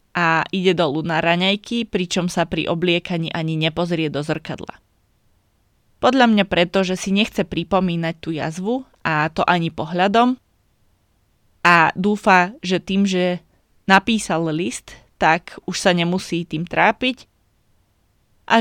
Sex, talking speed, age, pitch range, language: female, 130 wpm, 20-39, 150-190 Hz, Slovak